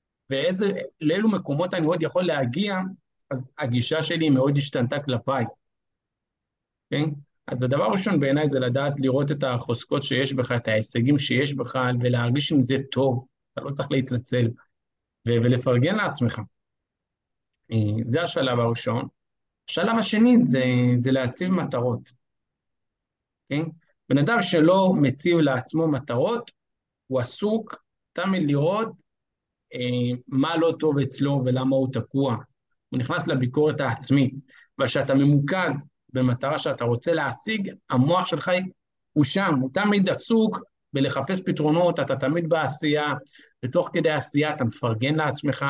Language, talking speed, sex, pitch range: Hebrew, 130 wpm, male, 125-160 Hz